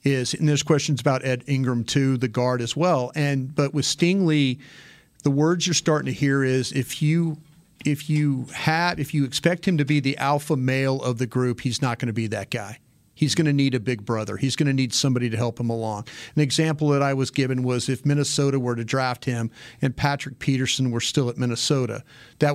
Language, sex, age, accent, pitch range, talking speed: English, male, 40-59, American, 130-155 Hz, 225 wpm